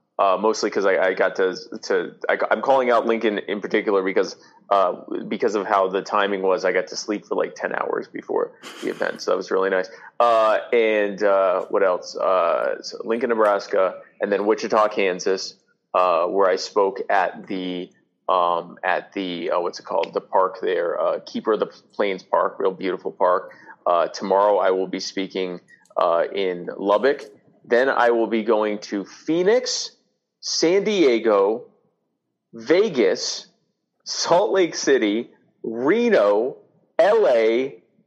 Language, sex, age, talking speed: English, male, 20-39, 160 wpm